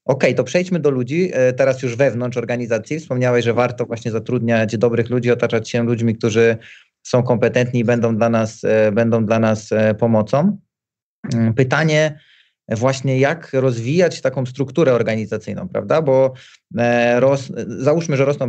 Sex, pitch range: male, 120-140 Hz